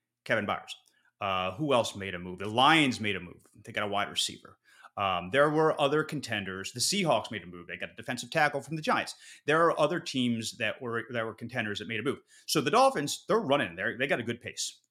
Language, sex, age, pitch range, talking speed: English, male, 30-49, 105-155 Hz, 240 wpm